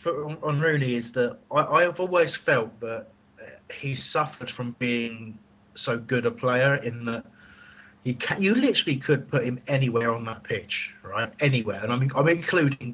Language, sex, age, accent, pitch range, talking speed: English, male, 30-49, British, 110-130 Hz, 160 wpm